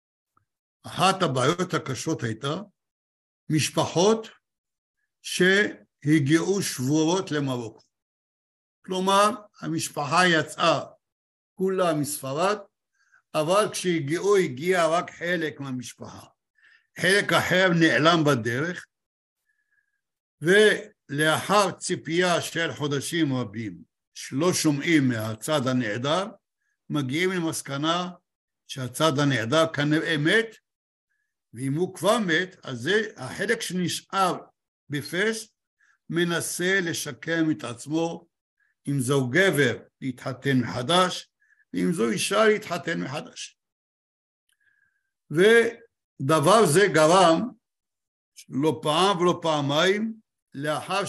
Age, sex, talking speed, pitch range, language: 60-79, male, 80 wpm, 145-190 Hz, Hebrew